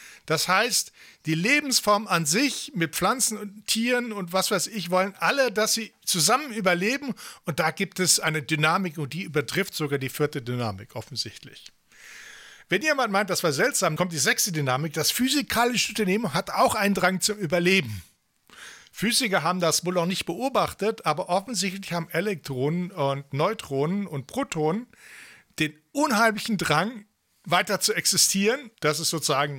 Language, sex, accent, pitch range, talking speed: English, male, German, 155-215 Hz, 155 wpm